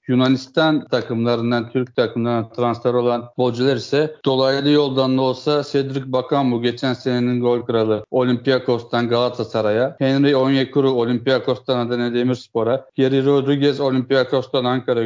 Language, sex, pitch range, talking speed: Turkish, male, 125-145 Hz, 120 wpm